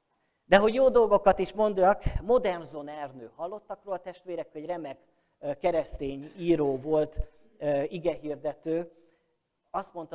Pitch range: 140-180 Hz